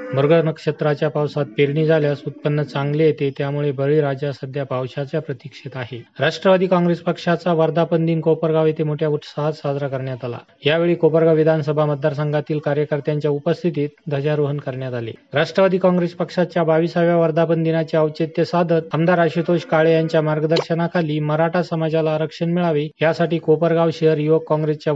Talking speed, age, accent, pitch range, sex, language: 140 wpm, 30-49, native, 150-165 Hz, male, Marathi